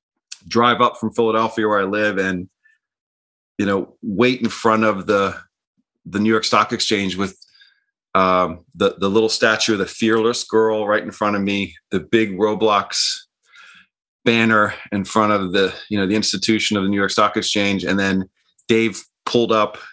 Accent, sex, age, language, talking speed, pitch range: American, male, 30-49, English, 175 wpm, 95-115 Hz